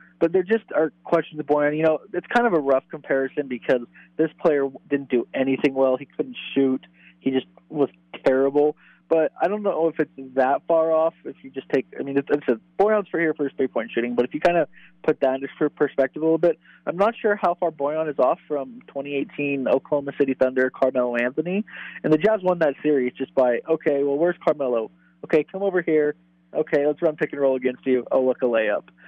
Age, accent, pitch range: 20-39, American, 135-160 Hz